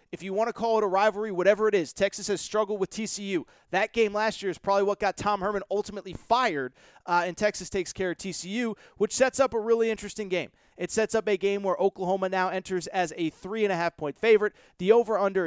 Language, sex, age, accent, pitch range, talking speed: English, male, 30-49, American, 190-235 Hz, 220 wpm